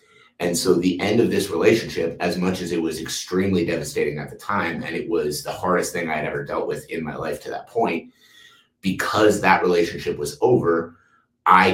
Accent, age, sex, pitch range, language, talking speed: American, 30-49, male, 80-95 Hz, English, 205 wpm